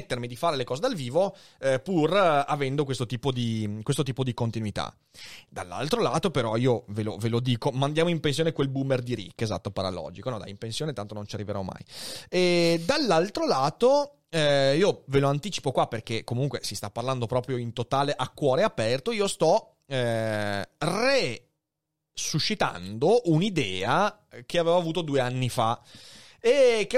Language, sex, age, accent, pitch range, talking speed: Italian, male, 30-49, native, 120-175 Hz, 170 wpm